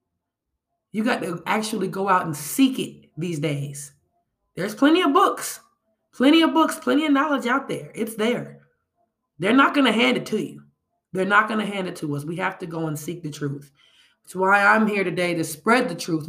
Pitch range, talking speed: 145-215 Hz, 215 wpm